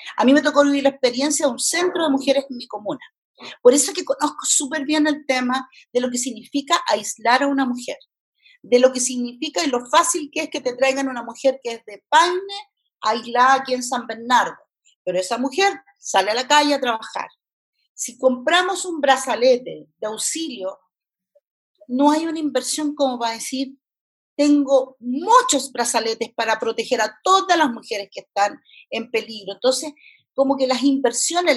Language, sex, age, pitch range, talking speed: Spanish, female, 40-59, 235-290 Hz, 180 wpm